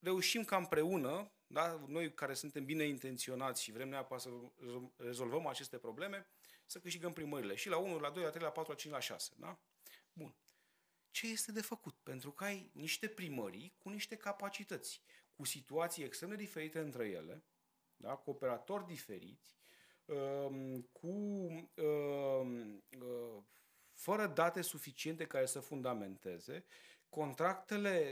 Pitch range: 135-190 Hz